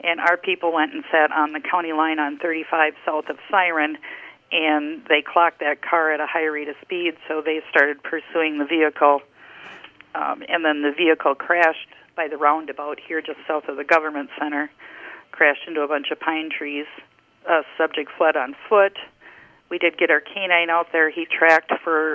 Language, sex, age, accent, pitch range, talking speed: English, female, 50-69, American, 150-170 Hz, 190 wpm